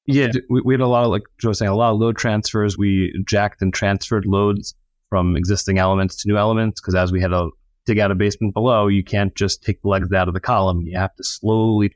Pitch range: 95-115 Hz